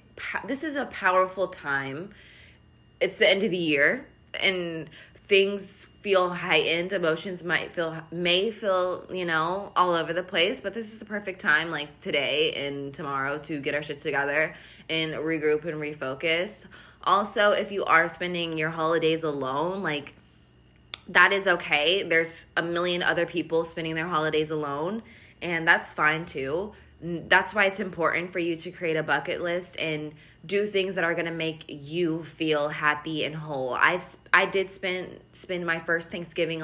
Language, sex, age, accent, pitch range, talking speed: English, female, 20-39, American, 155-185 Hz, 165 wpm